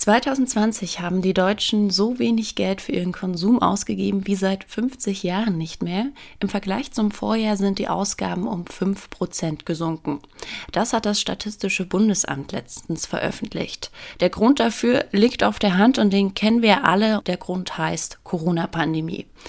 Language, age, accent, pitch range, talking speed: German, 20-39, German, 180-220 Hz, 155 wpm